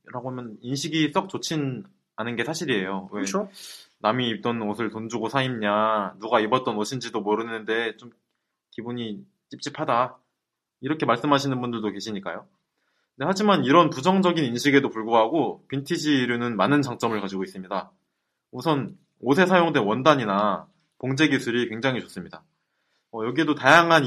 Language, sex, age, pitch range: Korean, male, 20-39, 110-150 Hz